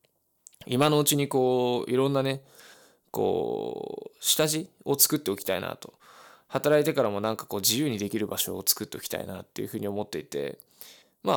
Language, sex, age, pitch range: Japanese, male, 20-39, 105-150 Hz